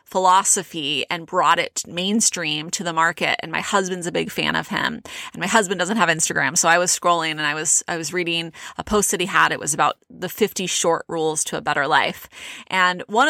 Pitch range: 175-210 Hz